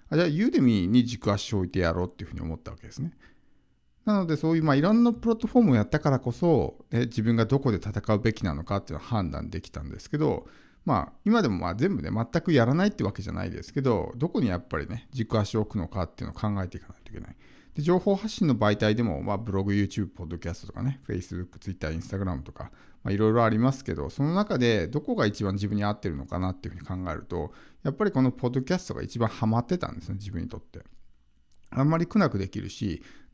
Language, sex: Japanese, male